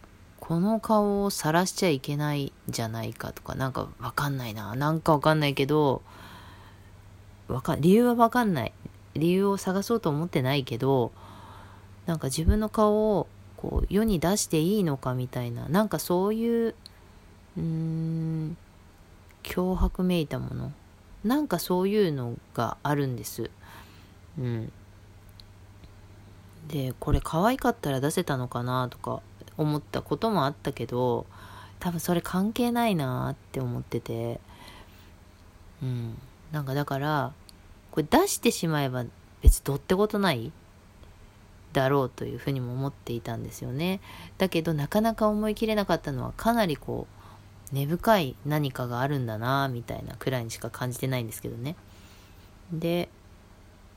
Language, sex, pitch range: Japanese, female, 100-170 Hz